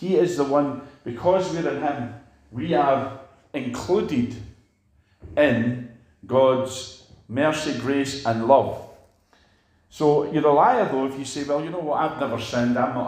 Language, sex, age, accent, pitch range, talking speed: English, male, 40-59, British, 100-135 Hz, 155 wpm